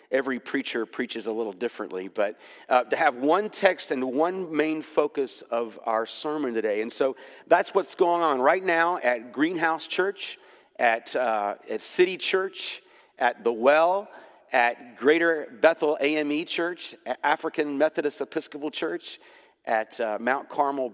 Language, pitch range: English, 120-180 Hz